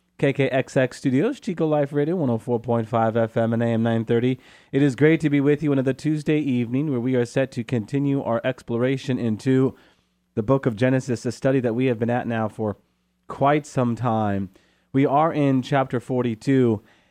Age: 30-49